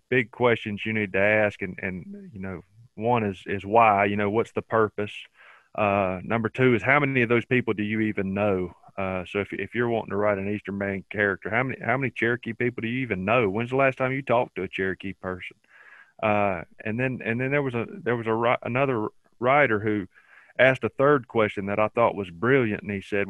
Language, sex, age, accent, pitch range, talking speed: English, male, 30-49, American, 100-120 Hz, 230 wpm